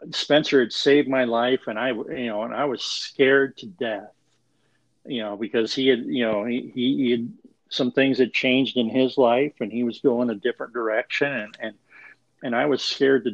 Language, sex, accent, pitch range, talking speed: English, male, American, 105-130 Hz, 205 wpm